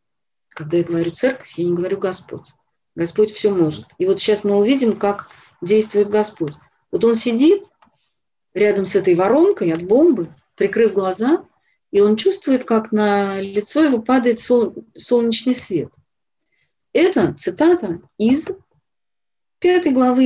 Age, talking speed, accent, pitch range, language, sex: 40-59, 135 wpm, native, 170-245 Hz, Russian, female